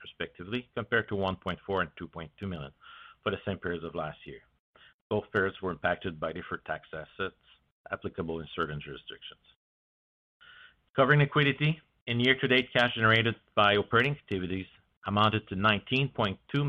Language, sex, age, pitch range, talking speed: English, male, 50-69, 85-110 Hz, 135 wpm